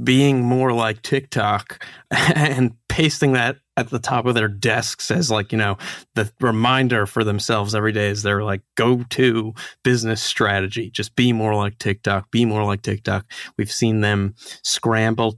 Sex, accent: male, American